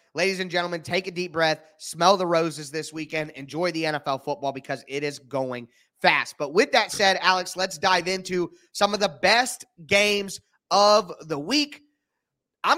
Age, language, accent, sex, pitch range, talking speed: 30-49, English, American, male, 165-230 Hz, 180 wpm